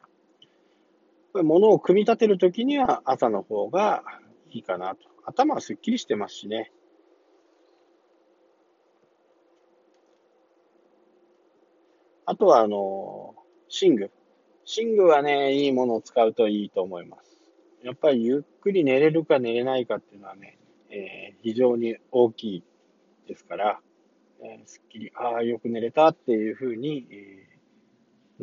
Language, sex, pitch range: Japanese, male, 110-175 Hz